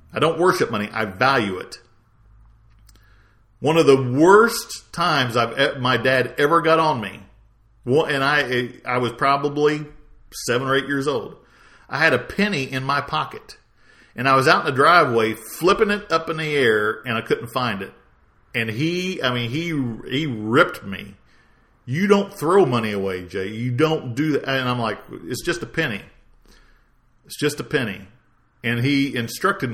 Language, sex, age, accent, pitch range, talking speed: English, male, 50-69, American, 120-160 Hz, 175 wpm